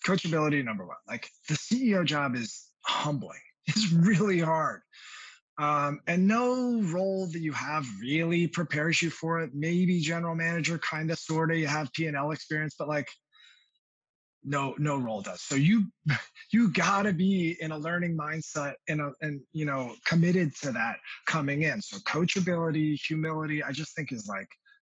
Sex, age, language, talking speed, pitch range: male, 20-39, English, 165 wpm, 135-180 Hz